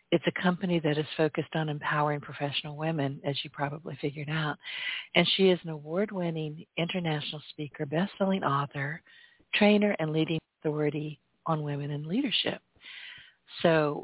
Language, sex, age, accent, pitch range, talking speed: English, female, 50-69, American, 150-180 Hz, 140 wpm